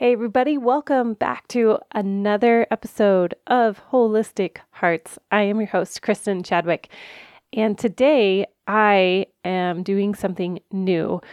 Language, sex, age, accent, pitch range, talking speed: English, female, 30-49, American, 185-215 Hz, 120 wpm